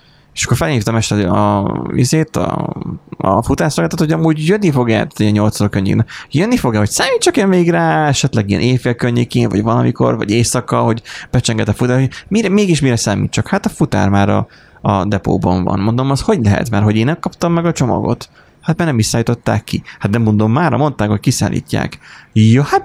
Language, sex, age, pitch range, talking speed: Hungarian, male, 30-49, 105-130 Hz, 195 wpm